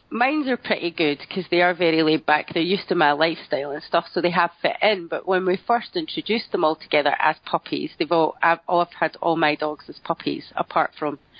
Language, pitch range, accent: English, 170-215 Hz, British